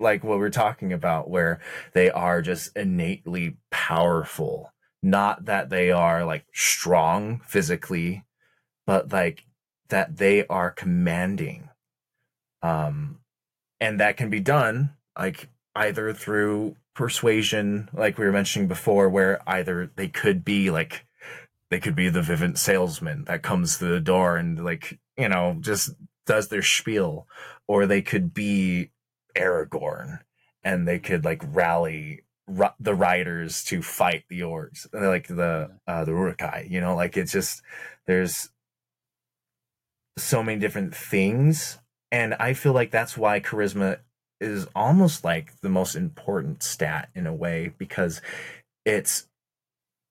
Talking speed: 140 wpm